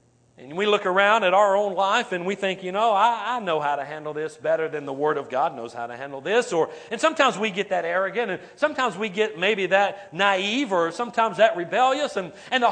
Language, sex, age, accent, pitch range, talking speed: English, male, 40-59, American, 160-235 Hz, 245 wpm